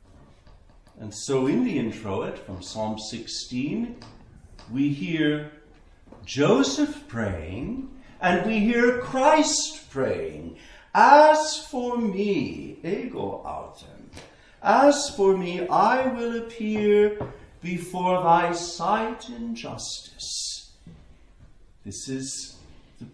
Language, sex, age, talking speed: English, male, 50-69, 95 wpm